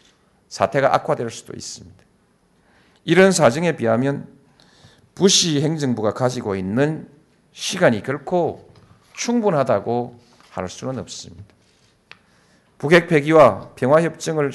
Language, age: Korean, 40-59